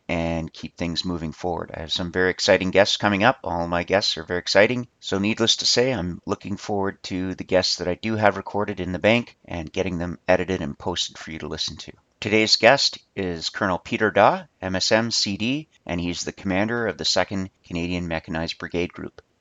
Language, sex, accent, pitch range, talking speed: English, male, American, 85-105 Hz, 205 wpm